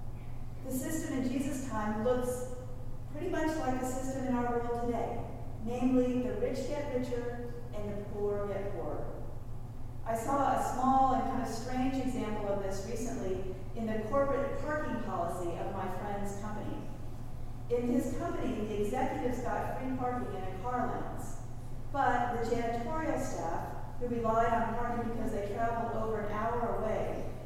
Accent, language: American, English